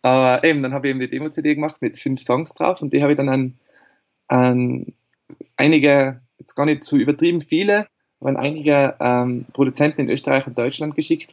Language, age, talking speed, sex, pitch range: German, 20-39, 205 wpm, male, 125-145 Hz